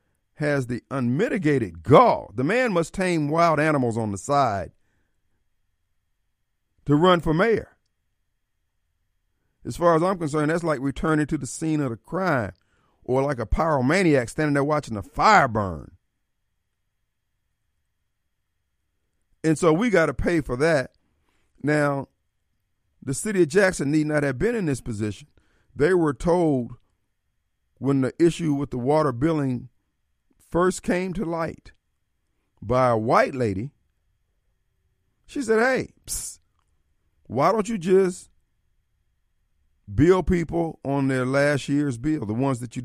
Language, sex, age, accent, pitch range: Japanese, male, 50-69, American, 100-155 Hz